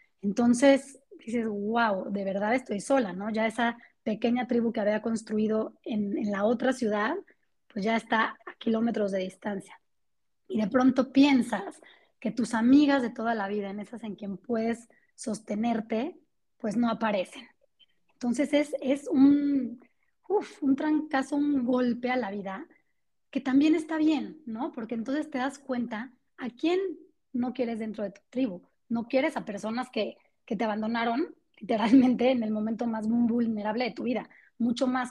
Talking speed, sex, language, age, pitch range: 165 wpm, female, Spanish, 20-39, 220-270 Hz